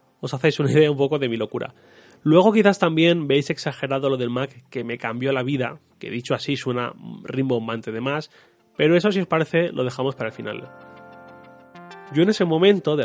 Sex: male